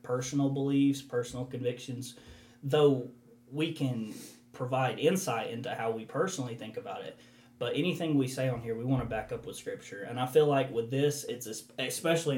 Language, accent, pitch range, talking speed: English, American, 120-150 Hz, 180 wpm